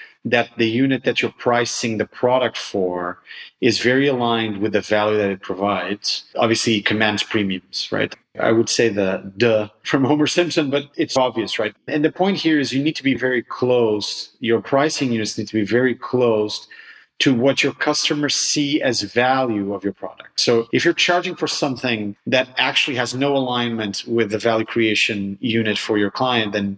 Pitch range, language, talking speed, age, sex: 105-130 Hz, English, 185 wpm, 40-59, male